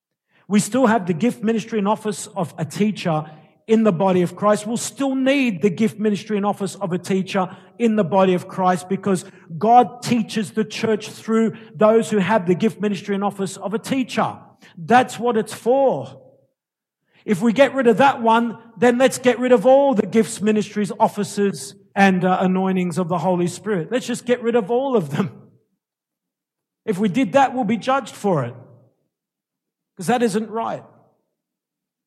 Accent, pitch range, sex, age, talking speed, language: Australian, 165-220 Hz, male, 50-69, 180 wpm, English